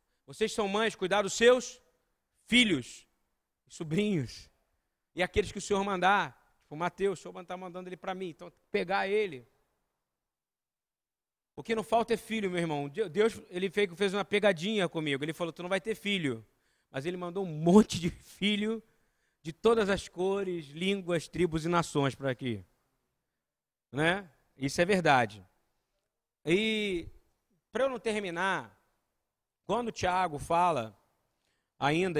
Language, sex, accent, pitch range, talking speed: Portuguese, male, Brazilian, 135-195 Hz, 145 wpm